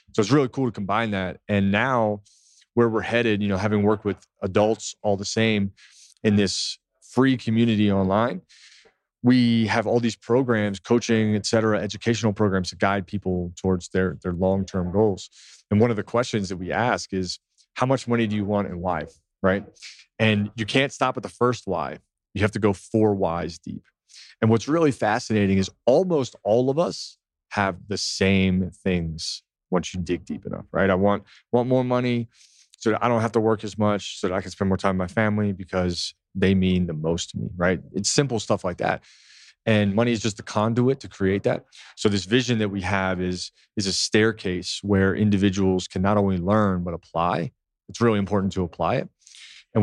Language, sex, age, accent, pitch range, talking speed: English, male, 30-49, American, 95-110 Hz, 200 wpm